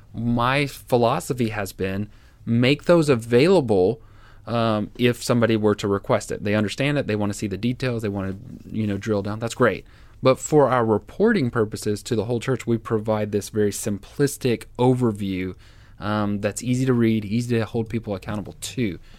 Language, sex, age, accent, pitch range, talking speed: English, male, 20-39, American, 105-125 Hz, 180 wpm